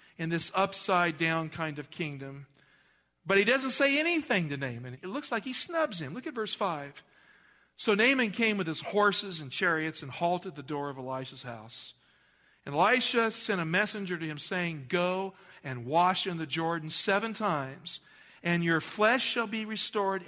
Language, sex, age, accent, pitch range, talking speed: English, male, 50-69, American, 155-210 Hz, 180 wpm